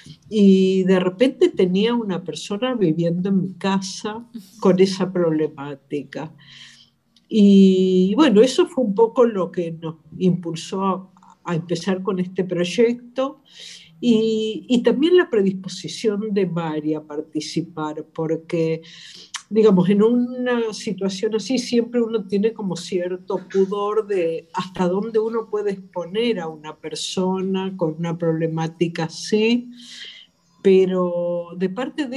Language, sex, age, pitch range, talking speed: Spanish, female, 50-69, 175-225 Hz, 125 wpm